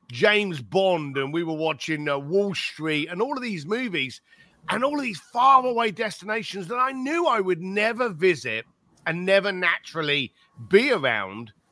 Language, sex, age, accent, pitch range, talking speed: English, male, 40-59, British, 145-205 Hz, 165 wpm